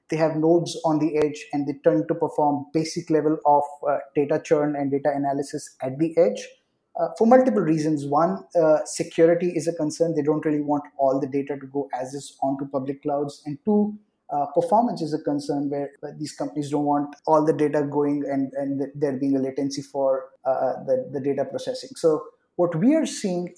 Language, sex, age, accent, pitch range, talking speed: English, male, 20-39, Indian, 145-175 Hz, 205 wpm